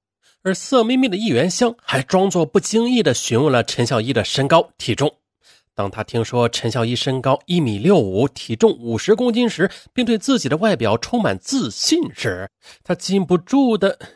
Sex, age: male, 30-49